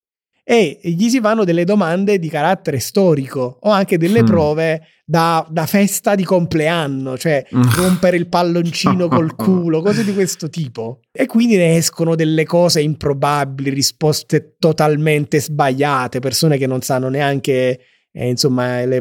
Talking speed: 145 wpm